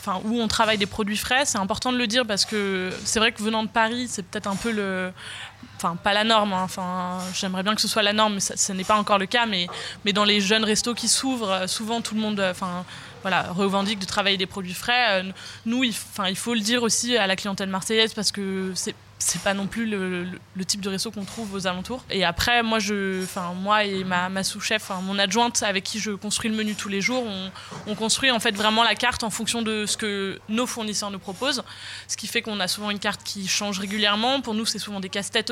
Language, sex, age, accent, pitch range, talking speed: French, female, 20-39, French, 190-225 Hz, 250 wpm